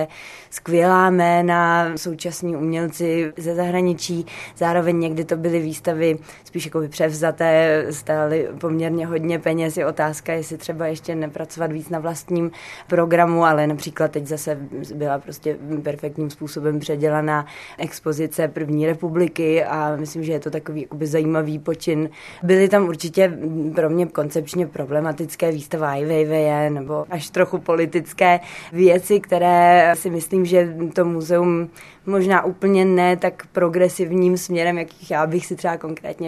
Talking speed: 135 wpm